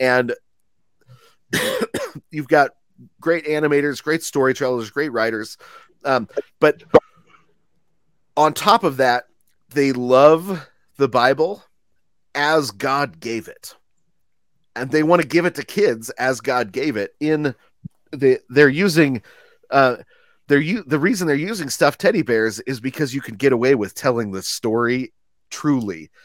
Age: 30-49